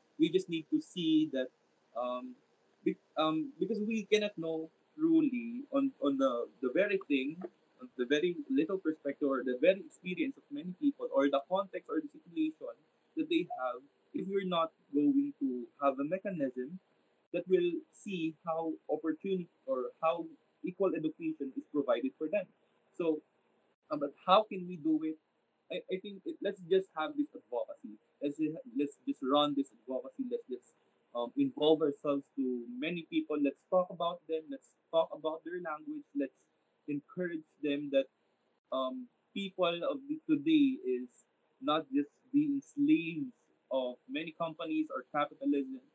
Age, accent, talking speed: 20-39, Filipino, 155 wpm